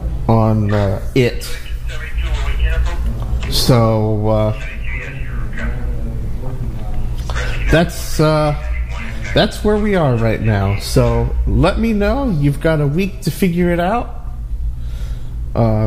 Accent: American